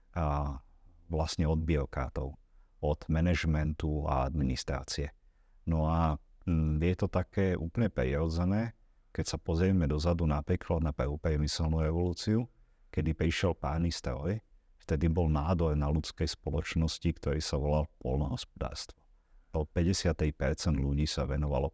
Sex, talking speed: male, 115 wpm